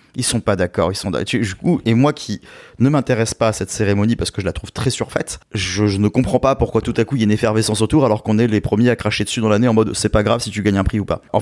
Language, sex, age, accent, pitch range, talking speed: French, male, 30-49, French, 100-120 Hz, 315 wpm